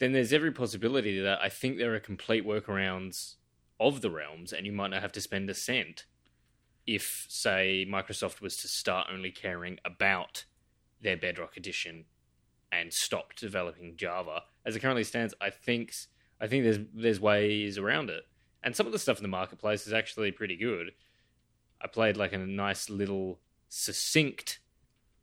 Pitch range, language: 90-110 Hz, English